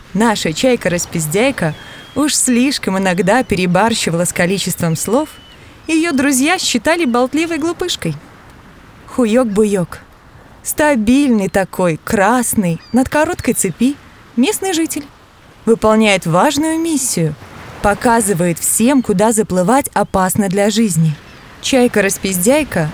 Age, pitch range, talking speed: 20-39, 185-270 Hz, 90 wpm